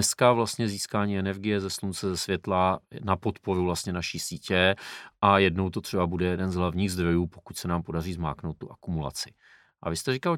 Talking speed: 190 wpm